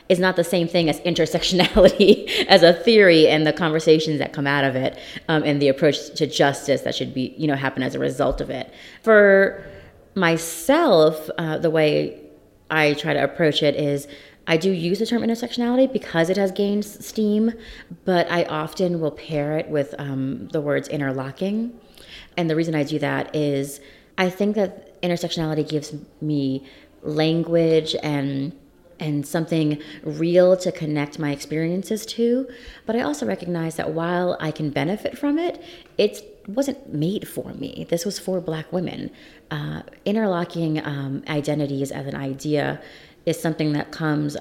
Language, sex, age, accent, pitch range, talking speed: English, female, 30-49, American, 145-180 Hz, 165 wpm